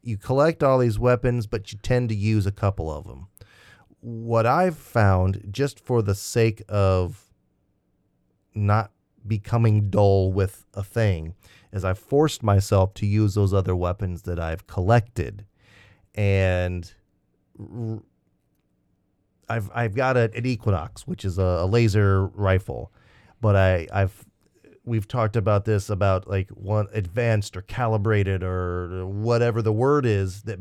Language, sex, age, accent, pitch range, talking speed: English, male, 30-49, American, 95-120 Hz, 135 wpm